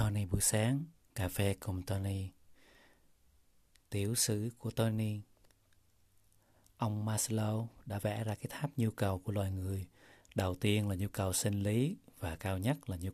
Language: Vietnamese